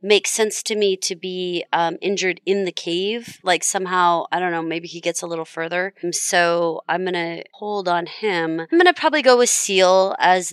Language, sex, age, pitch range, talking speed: English, female, 30-49, 170-200 Hz, 210 wpm